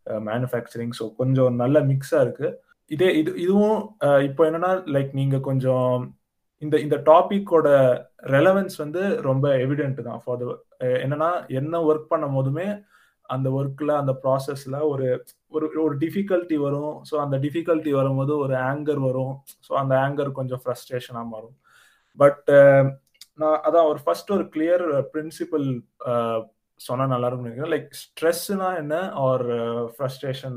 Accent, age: native, 20-39